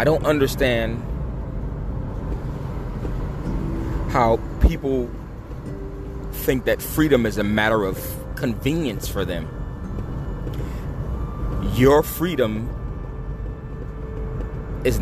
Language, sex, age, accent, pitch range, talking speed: English, male, 30-49, American, 105-150 Hz, 70 wpm